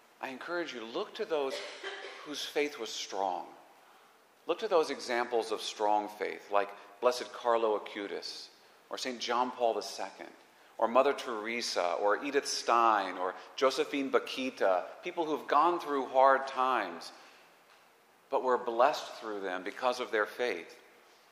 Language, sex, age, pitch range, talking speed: English, male, 40-59, 100-145 Hz, 145 wpm